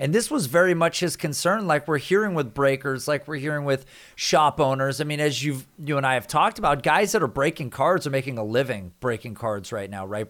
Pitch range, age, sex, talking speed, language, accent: 145-190 Hz, 30-49, male, 245 wpm, English, American